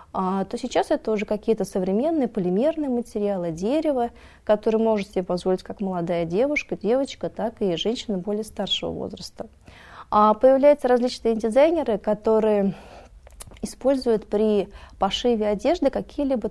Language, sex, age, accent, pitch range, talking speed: Russian, female, 30-49, native, 195-235 Hz, 120 wpm